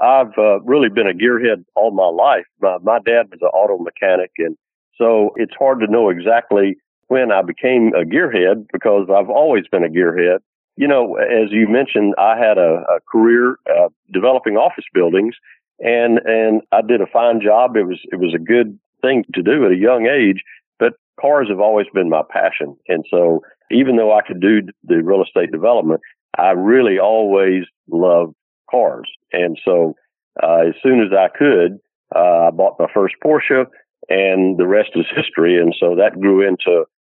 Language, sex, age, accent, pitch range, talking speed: English, male, 50-69, American, 95-115 Hz, 185 wpm